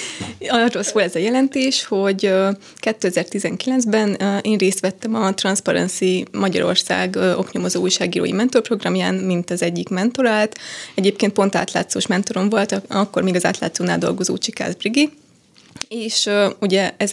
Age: 20-39